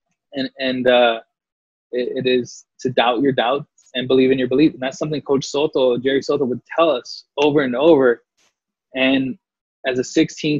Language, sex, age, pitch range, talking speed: English, male, 20-39, 130-155 Hz, 180 wpm